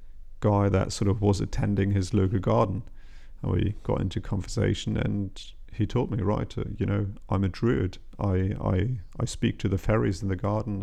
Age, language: 30-49, English